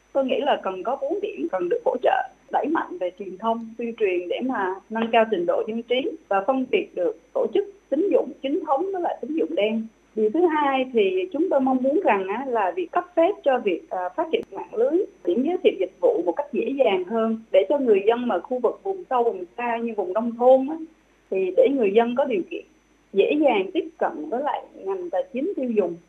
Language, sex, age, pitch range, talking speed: Vietnamese, female, 20-39, 225-360 Hz, 235 wpm